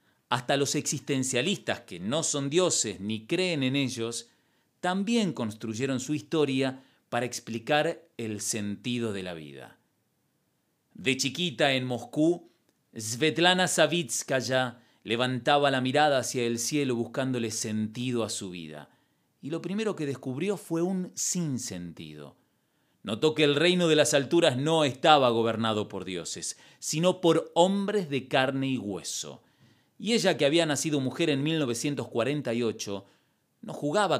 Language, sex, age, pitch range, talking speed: Spanish, male, 40-59, 115-155 Hz, 135 wpm